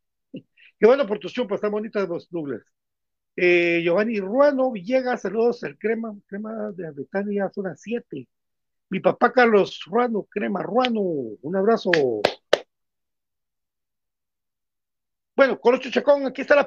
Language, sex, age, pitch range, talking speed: Spanish, male, 50-69, 205-280 Hz, 125 wpm